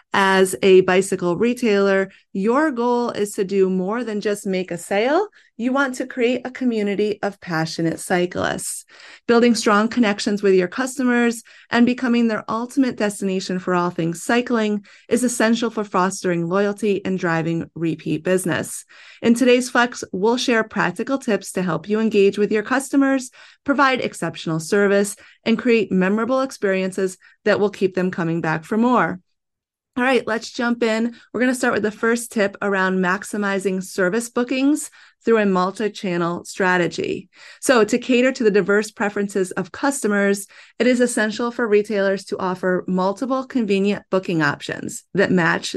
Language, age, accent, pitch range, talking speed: English, 30-49, American, 185-235 Hz, 160 wpm